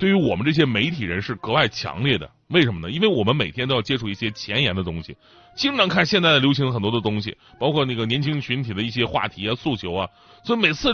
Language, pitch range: Chinese, 120-185 Hz